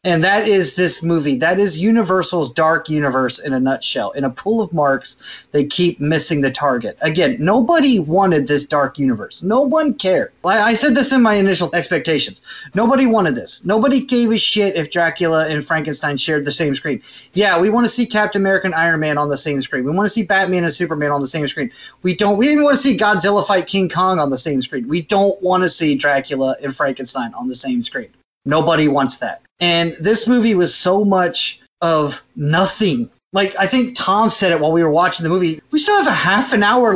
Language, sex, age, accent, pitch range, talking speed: English, male, 30-49, American, 150-215 Hz, 220 wpm